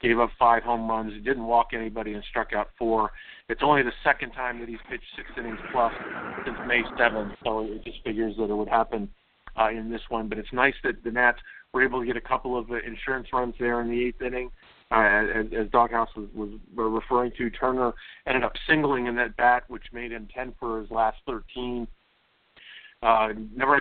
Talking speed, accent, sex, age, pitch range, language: 210 wpm, American, male, 50-69, 110-120 Hz, English